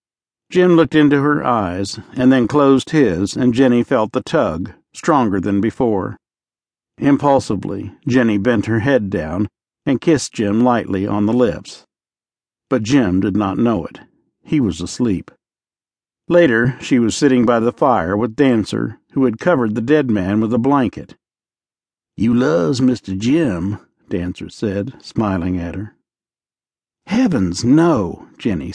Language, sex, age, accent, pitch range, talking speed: English, male, 60-79, American, 105-140 Hz, 145 wpm